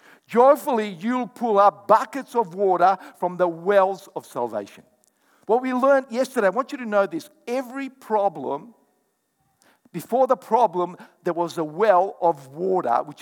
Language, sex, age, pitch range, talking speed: English, male, 50-69, 180-255 Hz, 155 wpm